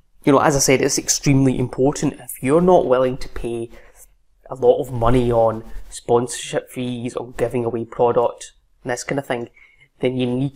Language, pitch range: English, 120-135 Hz